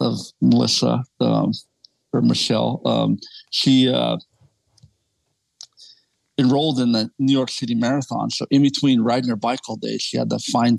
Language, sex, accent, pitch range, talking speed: English, male, American, 110-130 Hz, 150 wpm